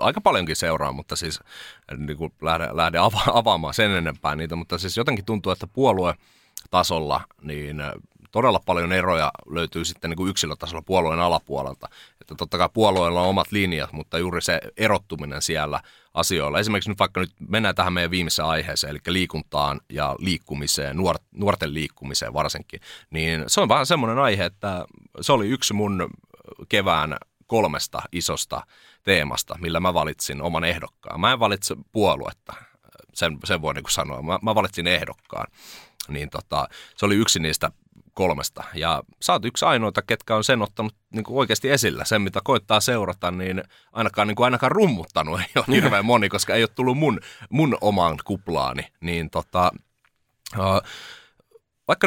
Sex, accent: male, native